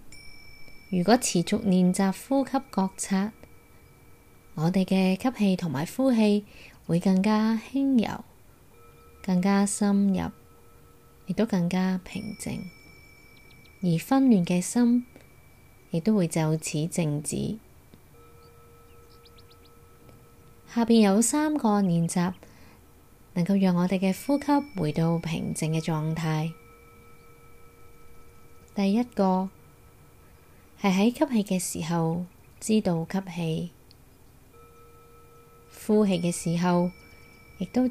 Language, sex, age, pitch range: Chinese, female, 20-39, 150-205 Hz